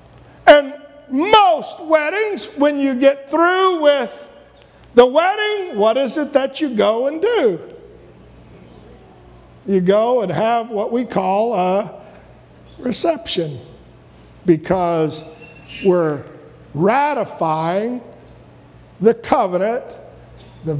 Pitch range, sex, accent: 175-275 Hz, male, American